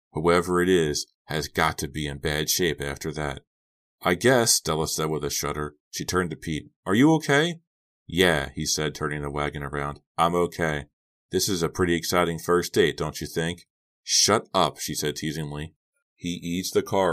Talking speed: 190 wpm